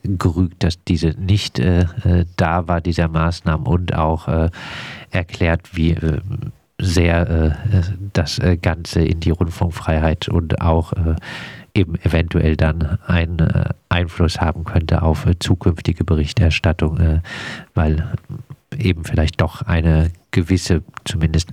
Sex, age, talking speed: male, 40-59, 125 wpm